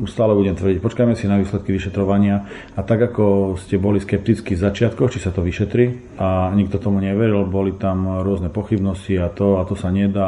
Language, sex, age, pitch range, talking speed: Slovak, male, 40-59, 95-100 Hz, 200 wpm